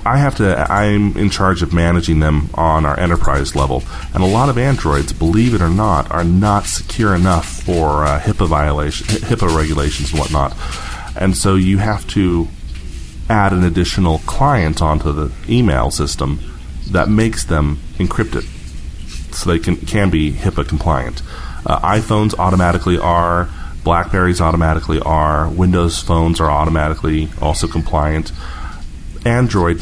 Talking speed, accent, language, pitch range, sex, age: 145 wpm, American, English, 75-100 Hz, male, 30-49